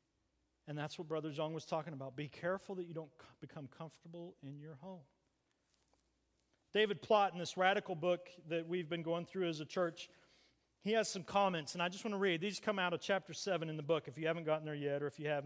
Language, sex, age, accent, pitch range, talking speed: English, male, 40-59, American, 155-205 Hz, 235 wpm